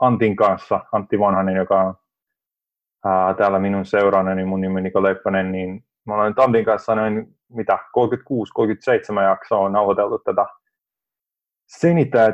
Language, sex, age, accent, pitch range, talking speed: Finnish, male, 30-49, native, 100-115 Hz, 135 wpm